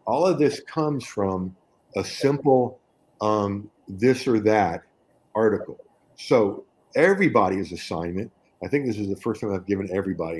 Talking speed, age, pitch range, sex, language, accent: 145 wpm, 50-69, 95-120 Hz, male, English, American